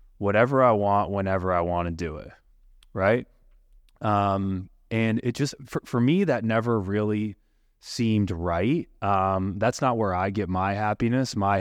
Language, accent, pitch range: English, American, 95-125 Hz